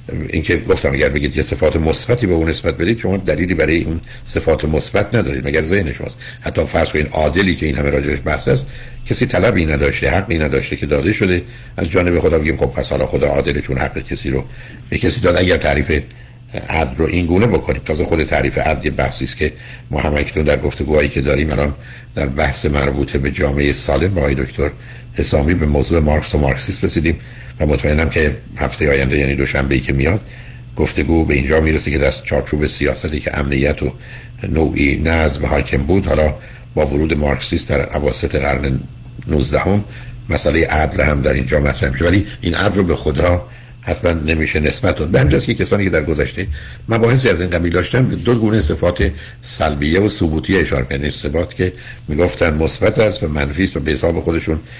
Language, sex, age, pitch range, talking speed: Persian, male, 60-79, 75-100 Hz, 190 wpm